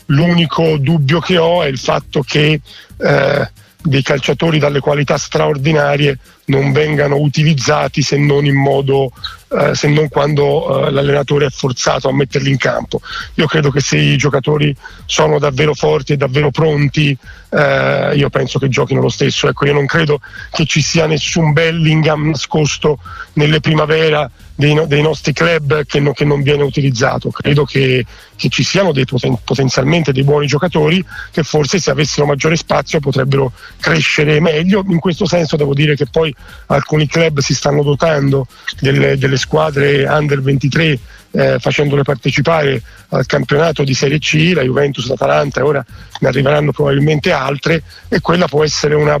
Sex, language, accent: male, Italian, native